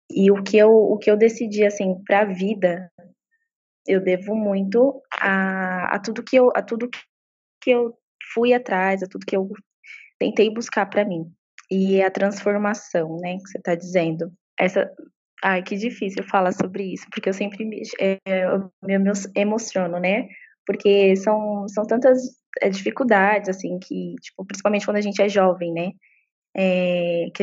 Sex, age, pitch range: female, 20-39, 190-220 Hz